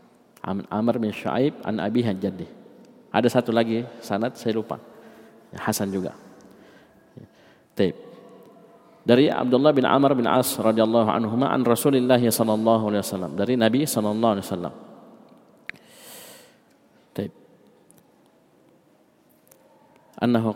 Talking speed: 100 wpm